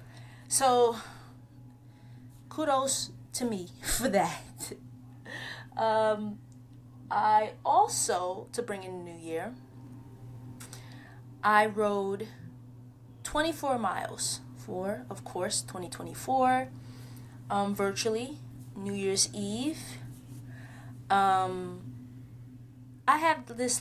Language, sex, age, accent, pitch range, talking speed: English, female, 20-39, American, 125-200 Hz, 80 wpm